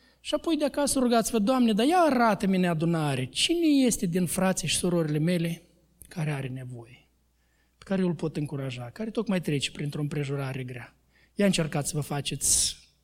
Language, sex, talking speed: Romanian, male, 175 wpm